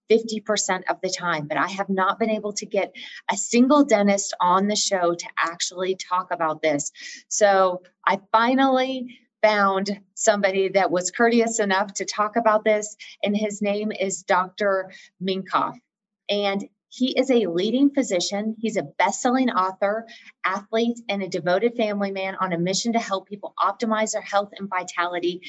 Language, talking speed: English, 160 wpm